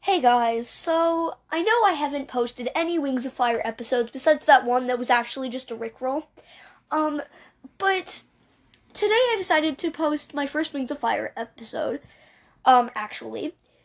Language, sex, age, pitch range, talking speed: English, female, 10-29, 245-315 Hz, 160 wpm